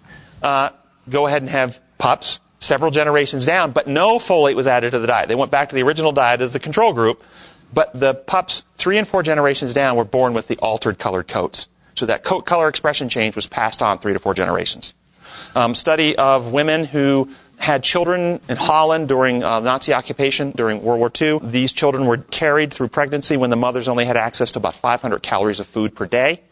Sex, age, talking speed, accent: male, 40-59, 210 wpm, American